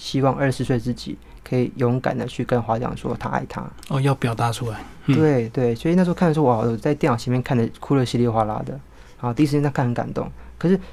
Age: 20-39